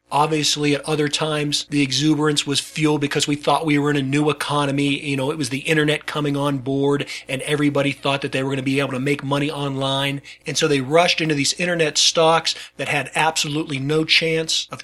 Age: 40-59